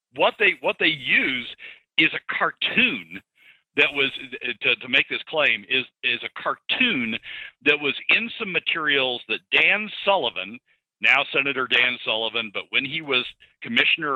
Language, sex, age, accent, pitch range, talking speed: English, male, 50-69, American, 120-170 Hz, 155 wpm